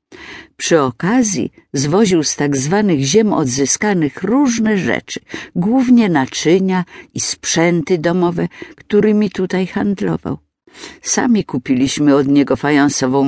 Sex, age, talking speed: female, 50-69, 105 wpm